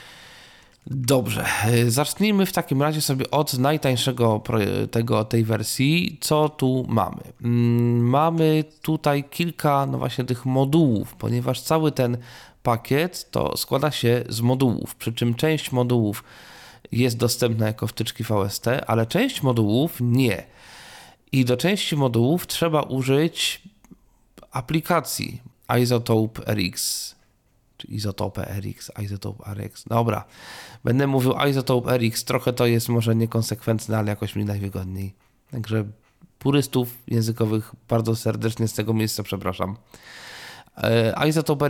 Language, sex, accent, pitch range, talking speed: Polish, male, native, 115-140 Hz, 115 wpm